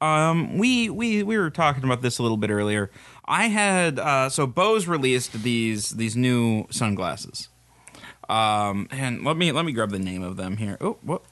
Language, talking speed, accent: English, 185 wpm, American